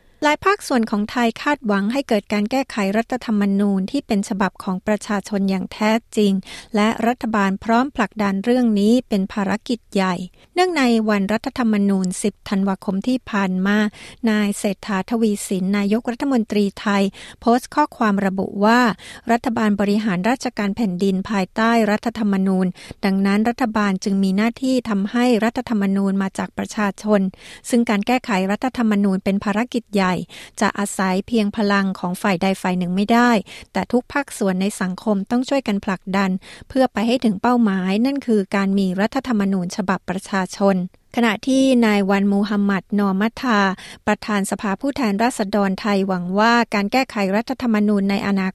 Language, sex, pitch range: Thai, female, 195-230 Hz